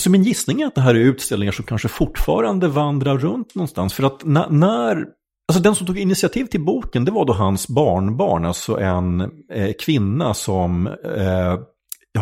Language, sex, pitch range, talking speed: Swedish, male, 90-140 Hz, 170 wpm